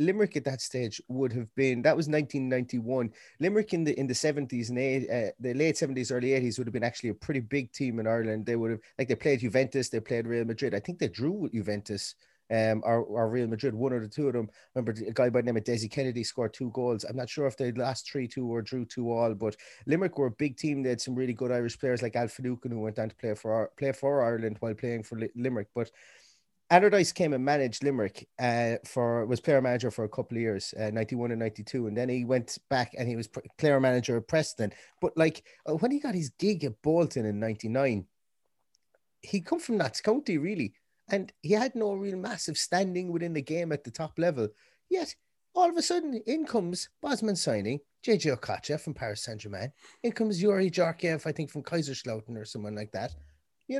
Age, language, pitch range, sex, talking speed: 30-49, English, 115-160 Hz, male, 225 wpm